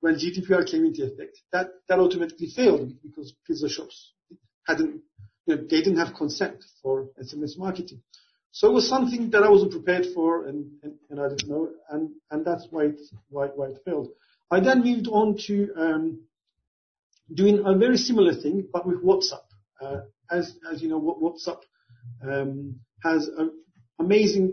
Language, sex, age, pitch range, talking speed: English, male, 50-69, 145-205 Hz, 170 wpm